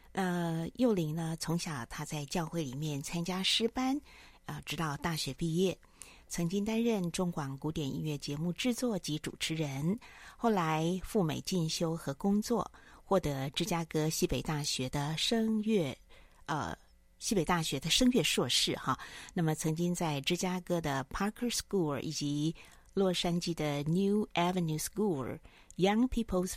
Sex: female